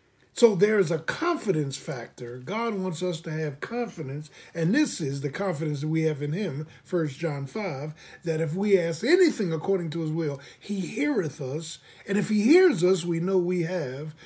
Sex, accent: male, American